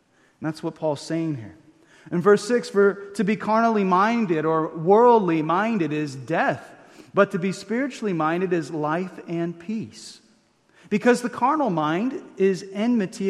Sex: male